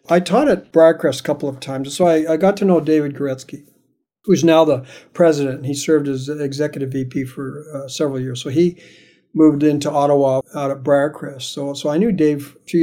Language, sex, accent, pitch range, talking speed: English, male, American, 140-170 Hz, 210 wpm